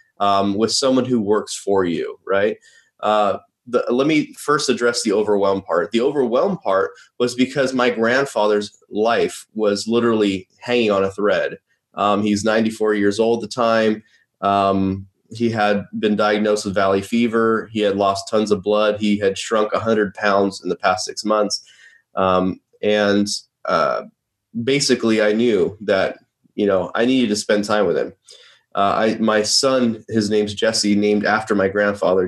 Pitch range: 100-115 Hz